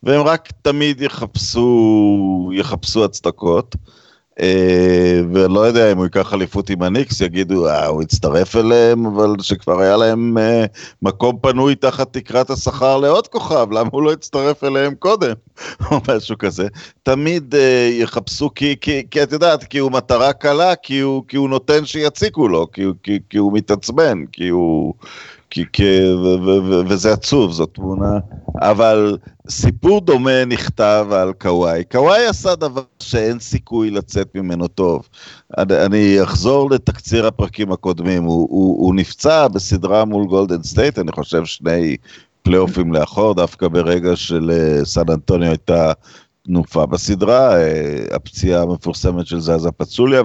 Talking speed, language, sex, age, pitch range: 145 wpm, Hebrew, male, 40-59, 90-130 Hz